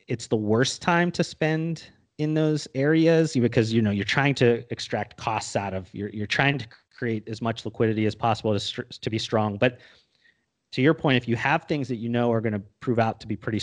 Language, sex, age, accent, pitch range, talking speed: English, male, 30-49, American, 110-135 Hz, 230 wpm